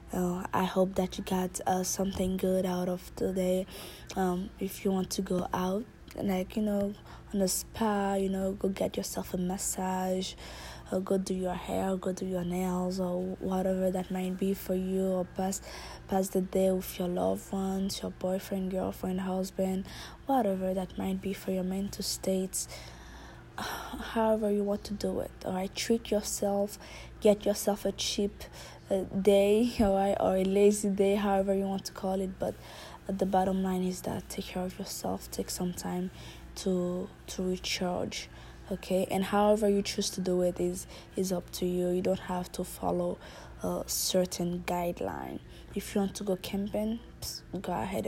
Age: 20-39